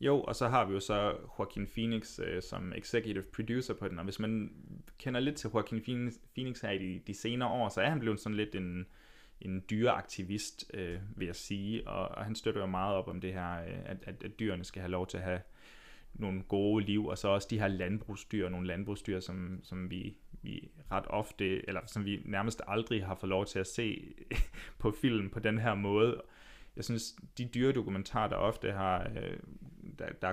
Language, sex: Danish, male